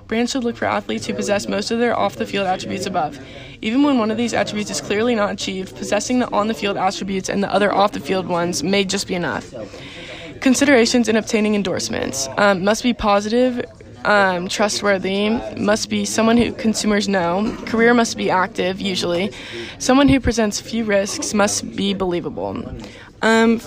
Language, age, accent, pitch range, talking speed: English, 20-39, American, 200-230 Hz, 170 wpm